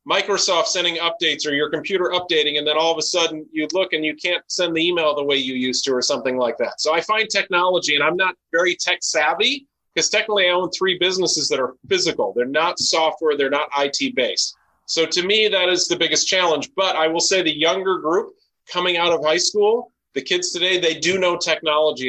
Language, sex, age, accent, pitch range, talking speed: English, male, 40-59, American, 145-185 Hz, 225 wpm